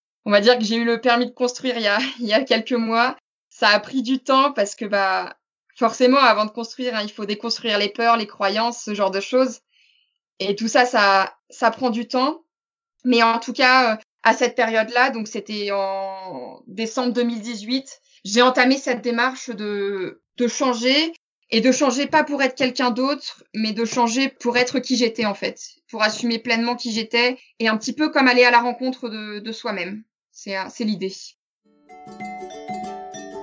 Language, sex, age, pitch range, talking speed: French, female, 20-39, 210-250 Hz, 190 wpm